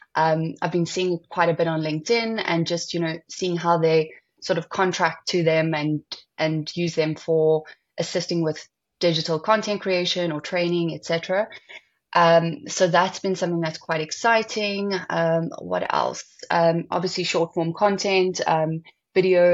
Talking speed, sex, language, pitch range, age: 165 wpm, female, English, 160-180 Hz, 20-39